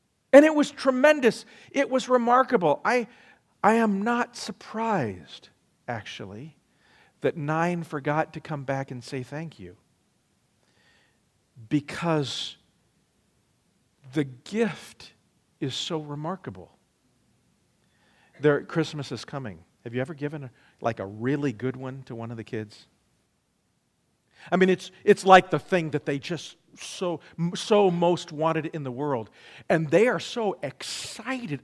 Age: 50-69